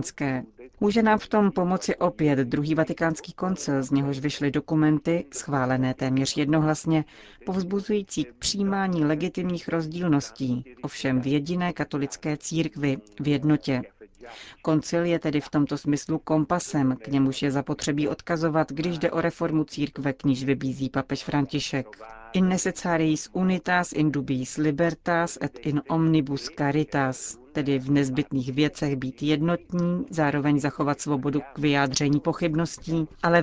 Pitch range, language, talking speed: 140-165 Hz, Czech, 125 wpm